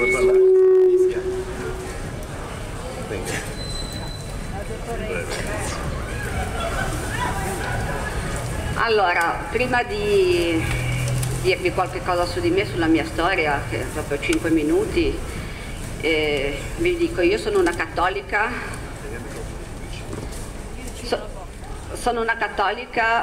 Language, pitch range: Italian, 180-275 Hz